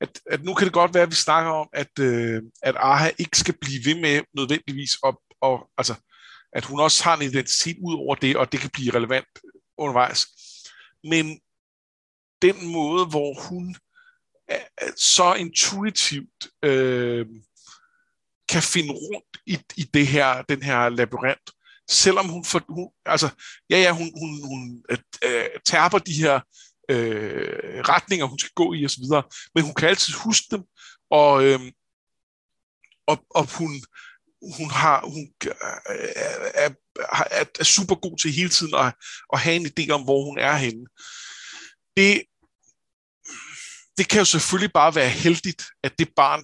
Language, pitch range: Danish, 135-180 Hz